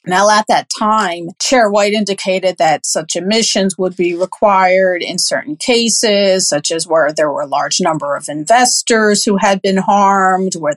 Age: 40-59